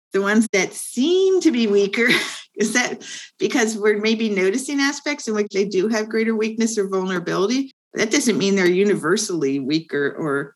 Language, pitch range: English, 175-220 Hz